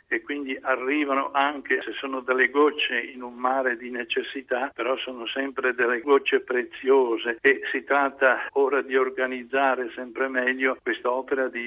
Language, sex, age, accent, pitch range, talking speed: Italian, male, 60-79, native, 130-145 Hz, 155 wpm